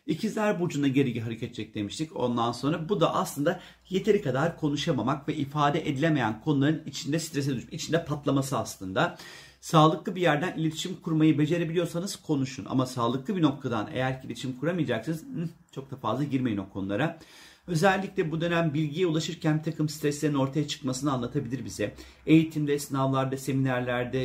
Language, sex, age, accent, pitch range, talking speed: Turkish, male, 40-59, native, 130-160 Hz, 145 wpm